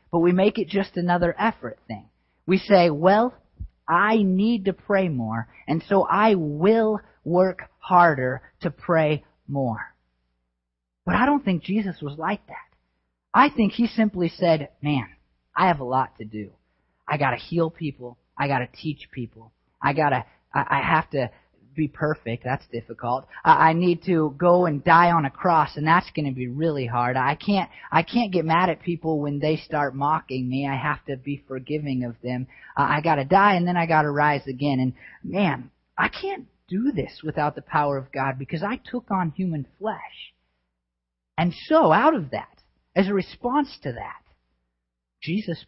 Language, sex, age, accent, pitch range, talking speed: English, male, 30-49, American, 125-180 Hz, 185 wpm